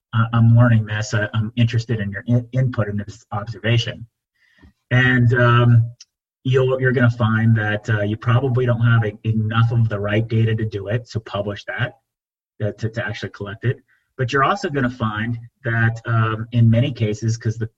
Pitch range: 110-120 Hz